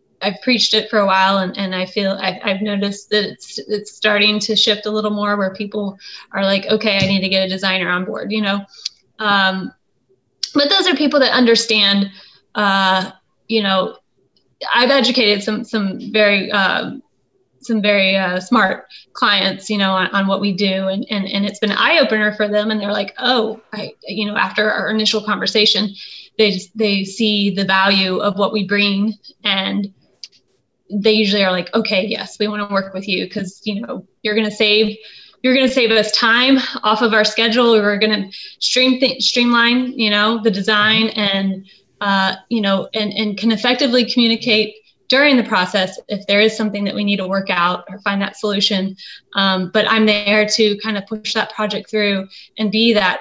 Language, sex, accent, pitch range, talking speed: English, female, American, 195-220 Hz, 200 wpm